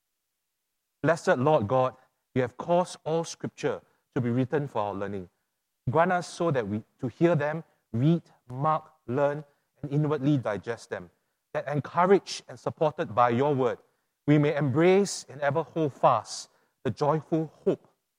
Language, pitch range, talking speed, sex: English, 125-170 Hz, 150 wpm, male